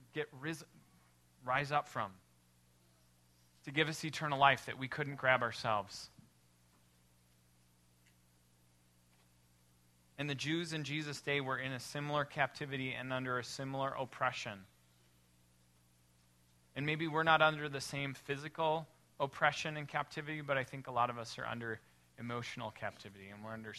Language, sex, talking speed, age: English, male, 140 wpm, 30-49